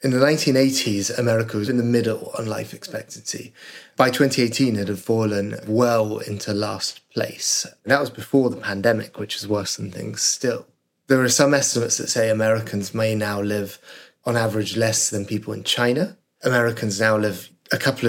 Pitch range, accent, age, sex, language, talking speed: 105-120 Hz, British, 20-39, male, English, 175 wpm